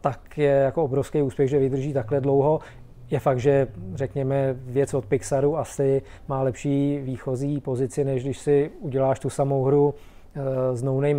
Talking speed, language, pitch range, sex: 165 wpm, Czech, 135-150 Hz, male